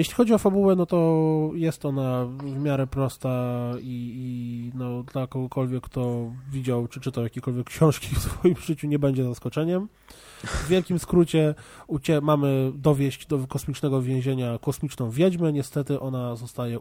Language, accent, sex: Polish, native, male